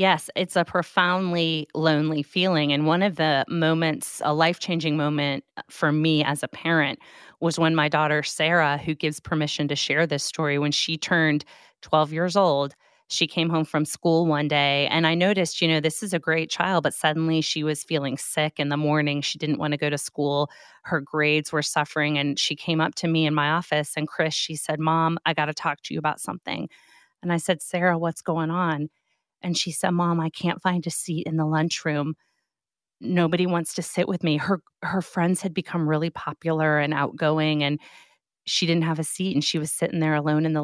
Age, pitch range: 30-49, 150-170 Hz